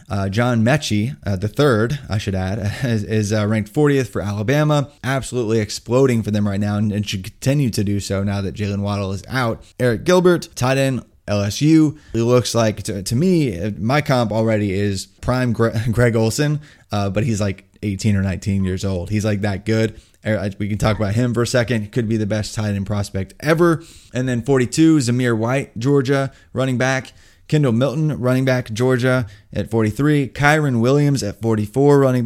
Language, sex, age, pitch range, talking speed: English, male, 20-39, 105-135 Hz, 195 wpm